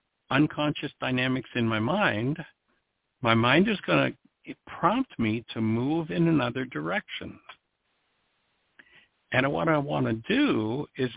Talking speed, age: 130 wpm, 60-79